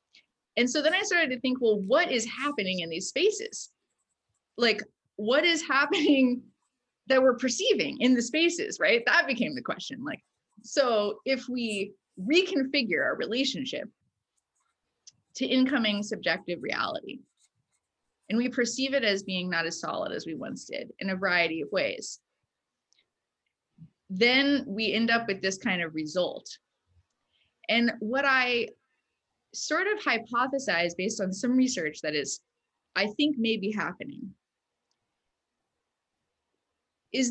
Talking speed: 135 wpm